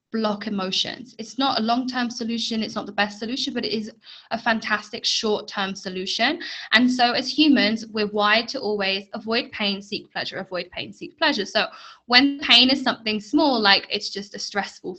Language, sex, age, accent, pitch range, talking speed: English, female, 10-29, British, 195-250 Hz, 185 wpm